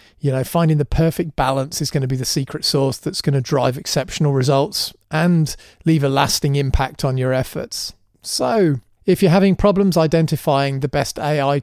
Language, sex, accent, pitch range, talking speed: English, male, British, 125-160 Hz, 185 wpm